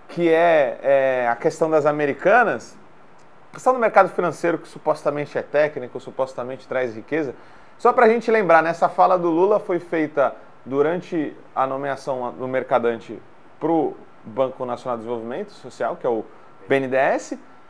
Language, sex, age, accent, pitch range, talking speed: Portuguese, male, 30-49, Brazilian, 145-205 Hz, 155 wpm